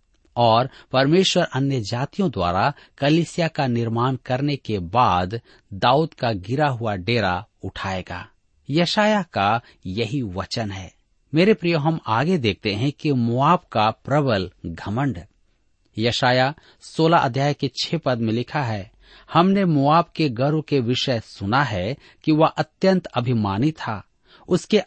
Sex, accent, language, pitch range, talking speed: male, native, Hindi, 110-155 Hz, 135 wpm